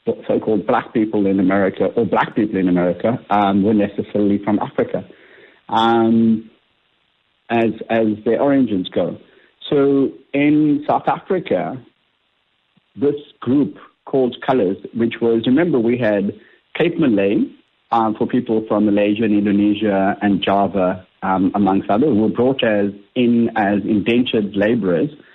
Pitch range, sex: 105-125 Hz, male